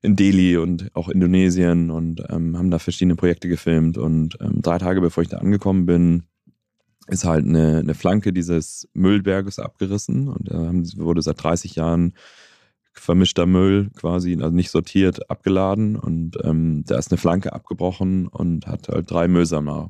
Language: German